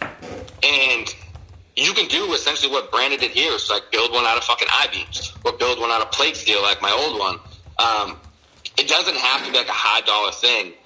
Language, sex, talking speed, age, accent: English, male, 215 wpm, 30-49, American